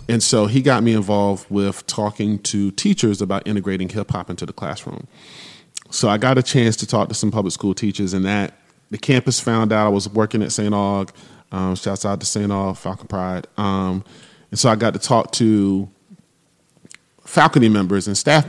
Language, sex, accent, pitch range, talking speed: English, male, American, 90-110 Hz, 195 wpm